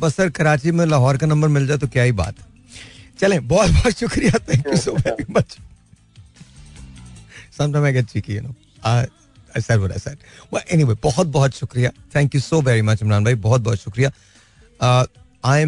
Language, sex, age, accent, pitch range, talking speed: Hindi, male, 40-59, native, 105-130 Hz, 175 wpm